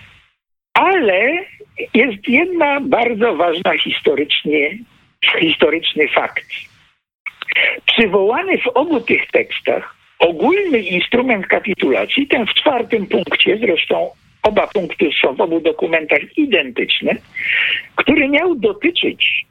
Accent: native